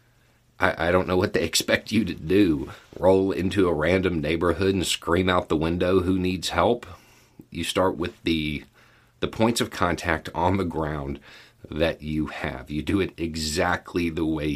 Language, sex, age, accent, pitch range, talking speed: English, male, 40-59, American, 75-95 Hz, 175 wpm